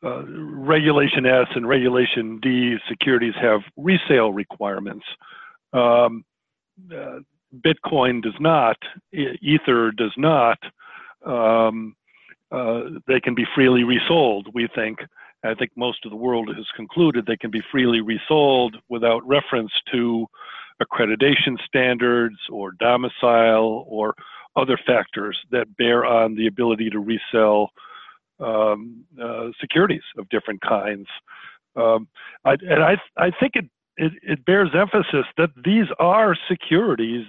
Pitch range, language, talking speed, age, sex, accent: 115-150 Hz, English, 125 wpm, 50-69, male, American